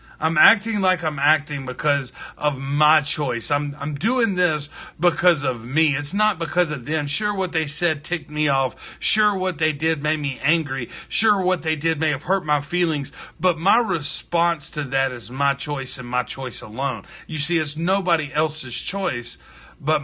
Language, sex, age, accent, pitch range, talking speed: English, male, 40-59, American, 145-175 Hz, 190 wpm